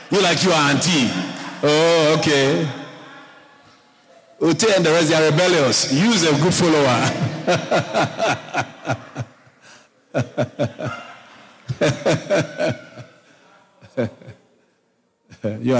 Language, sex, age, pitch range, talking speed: English, male, 50-69, 110-145 Hz, 65 wpm